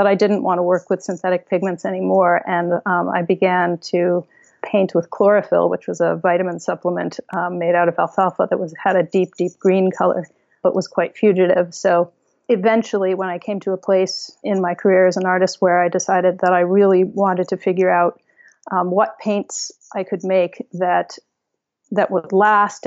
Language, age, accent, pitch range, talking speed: English, 30-49, American, 180-200 Hz, 195 wpm